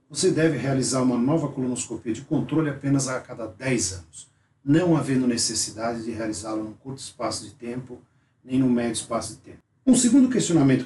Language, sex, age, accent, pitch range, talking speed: Portuguese, male, 50-69, Brazilian, 120-145 Hz, 175 wpm